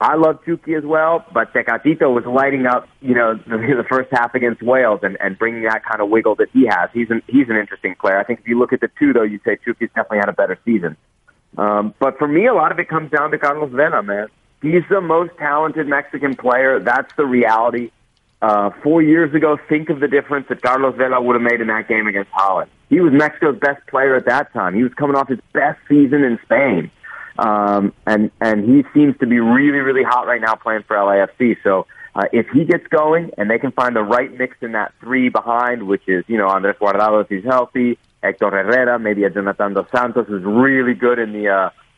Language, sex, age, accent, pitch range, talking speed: English, male, 30-49, American, 105-135 Hz, 230 wpm